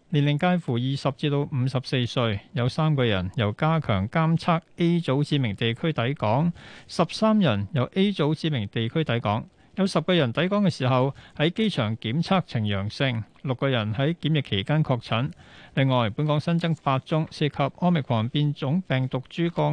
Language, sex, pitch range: Chinese, male, 120-160 Hz